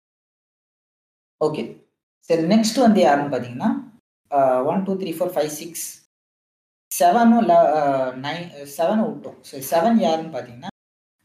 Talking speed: 110 wpm